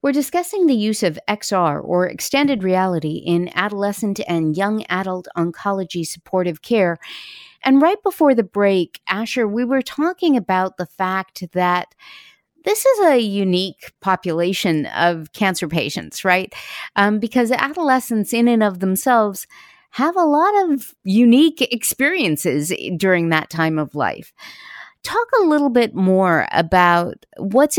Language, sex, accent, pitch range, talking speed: English, female, American, 175-240 Hz, 140 wpm